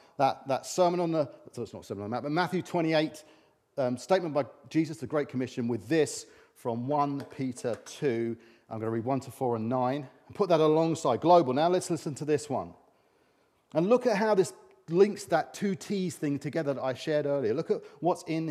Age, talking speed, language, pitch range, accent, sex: 40-59, 215 wpm, English, 130-170 Hz, British, male